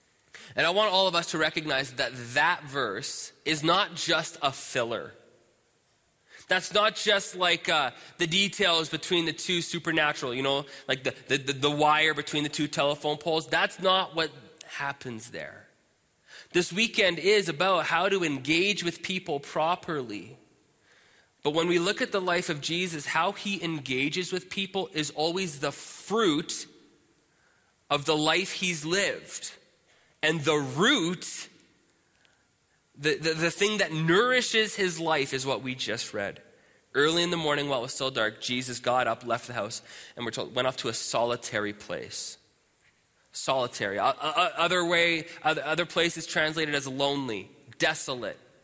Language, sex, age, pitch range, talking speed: English, male, 20-39, 145-180 Hz, 160 wpm